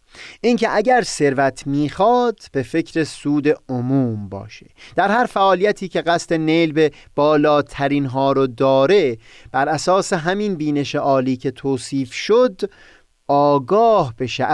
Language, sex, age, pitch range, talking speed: Persian, male, 30-49, 130-185 Hz, 125 wpm